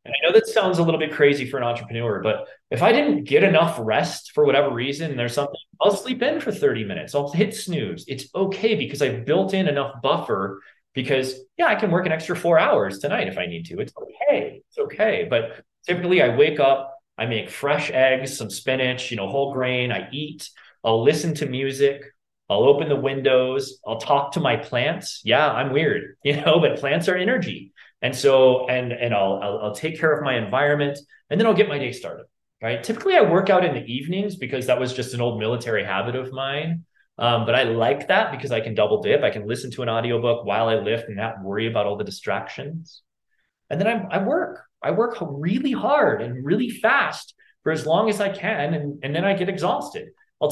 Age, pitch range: 30-49, 120-180 Hz